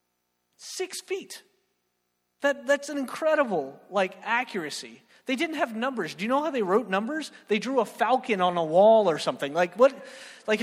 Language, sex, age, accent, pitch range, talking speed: English, male, 30-49, American, 165-255 Hz, 175 wpm